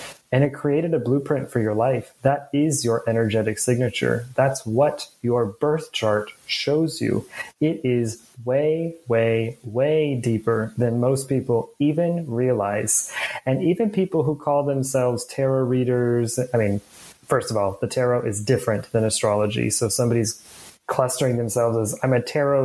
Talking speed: 155 wpm